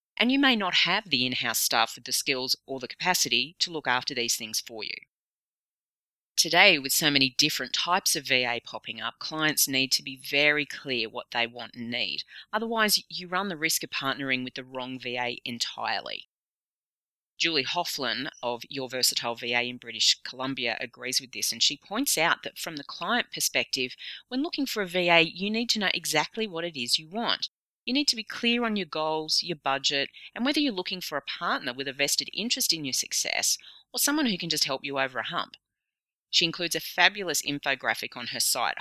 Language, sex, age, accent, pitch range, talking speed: English, female, 30-49, Australian, 125-175 Hz, 205 wpm